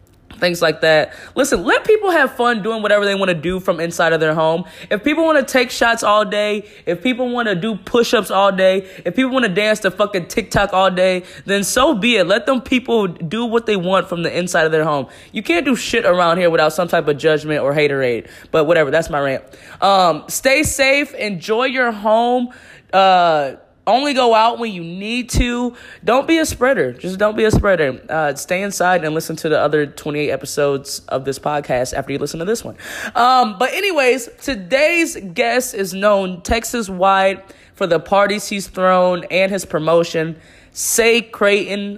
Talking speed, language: 205 wpm, English